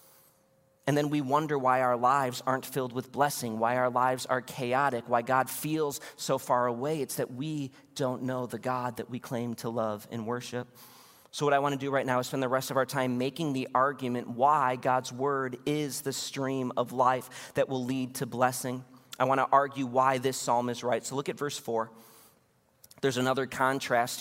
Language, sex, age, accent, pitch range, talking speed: English, male, 40-59, American, 130-185 Hz, 210 wpm